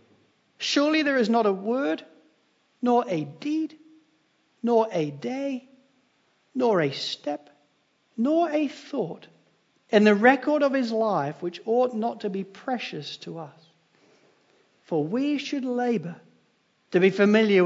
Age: 60-79